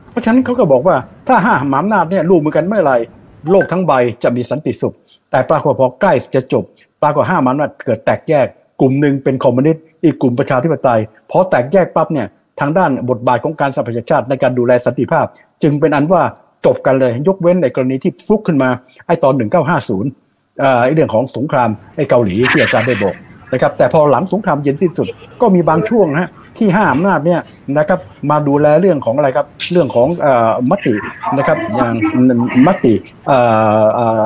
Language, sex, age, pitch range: Thai, male, 60-79, 125-170 Hz